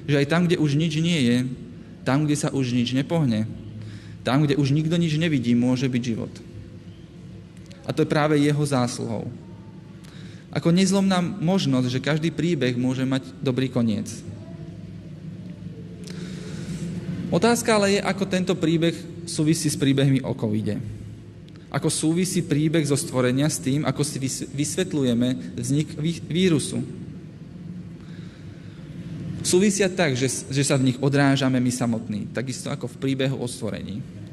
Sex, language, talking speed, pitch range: male, Slovak, 135 wpm, 130-165 Hz